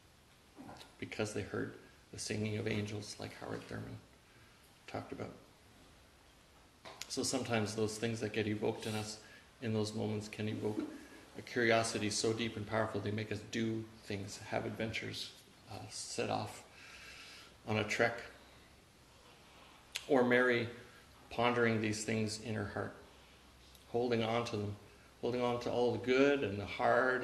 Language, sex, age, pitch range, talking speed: English, male, 40-59, 105-125 Hz, 145 wpm